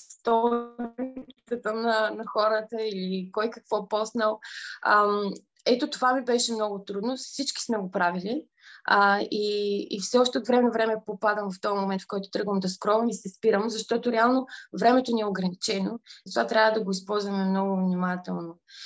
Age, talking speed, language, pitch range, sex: 20-39, 165 wpm, Bulgarian, 195-230 Hz, female